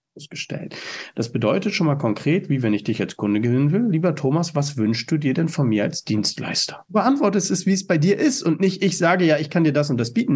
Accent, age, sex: German, 40-59, male